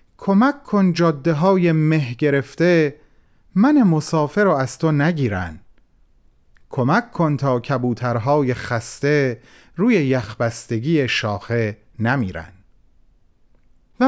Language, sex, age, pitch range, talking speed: Persian, male, 40-59, 115-180 Hz, 95 wpm